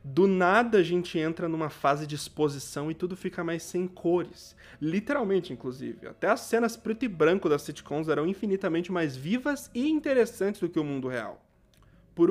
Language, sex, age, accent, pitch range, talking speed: Portuguese, male, 20-39, Brazilian, 130-200 Hz, 180 wpm